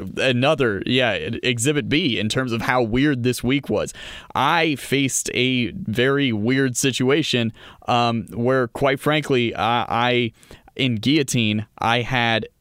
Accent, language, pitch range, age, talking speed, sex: American, English, 115-150 Hz, 20-39, 135 wpm, male